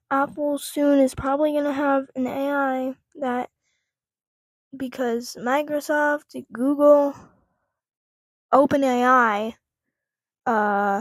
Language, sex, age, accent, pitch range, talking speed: English, female, 10-29, American, 245-285 Hz, 80 wpm